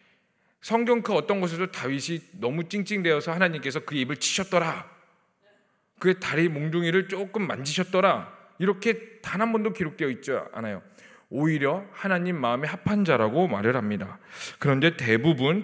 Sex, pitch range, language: male, 165-215 Hz, Korean